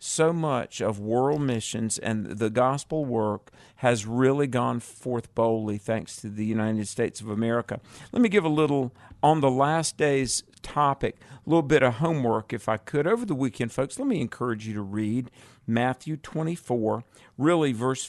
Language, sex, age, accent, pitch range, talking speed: English, male, 50-69, American, 115-145 Hz, 175 wpm